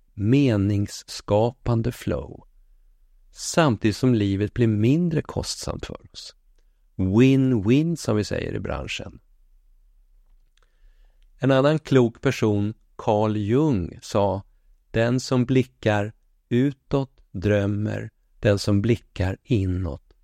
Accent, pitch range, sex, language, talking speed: native, 95-125 Hz, male, Swedish, 95 wpm